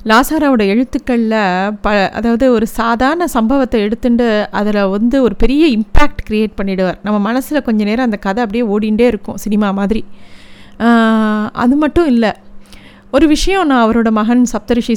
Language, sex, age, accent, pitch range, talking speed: Tamil, female, 30-49, native, 200-235 Hz, 140 wpm